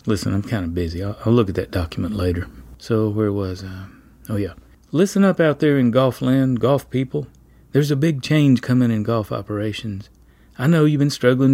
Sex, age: male, 40-59